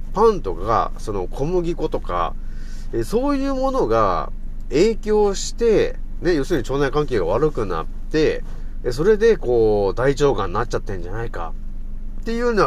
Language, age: Japanese, 40-59